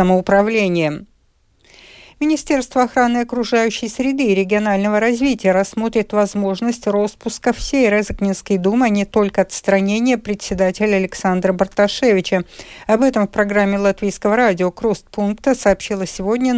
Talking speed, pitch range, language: 100 wpm, 190-230 Hz, Russian